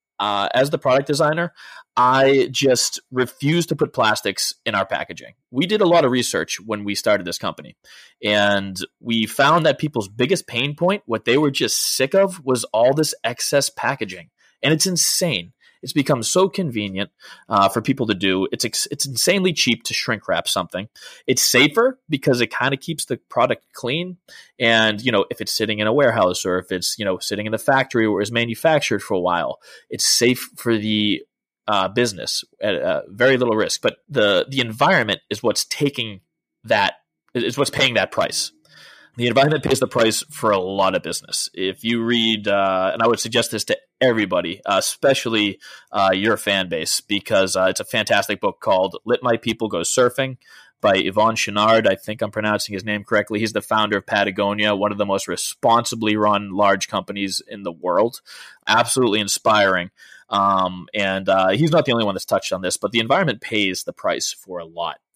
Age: 20-39